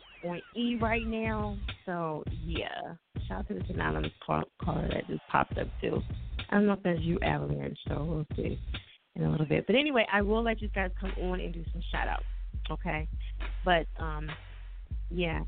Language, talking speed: English, 195 wpm